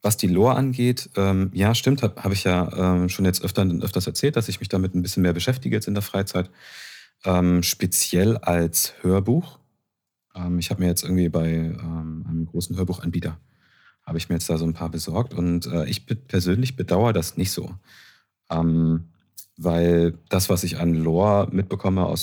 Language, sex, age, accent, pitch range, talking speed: German, male, 40-59, German, 80-95 Hz, 190 wpm